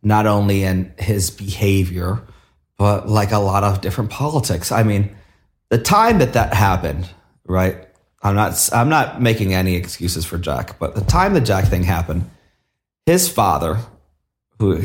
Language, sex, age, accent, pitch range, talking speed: English, male, 30-49, American, 90-105 Hz, 160 wpm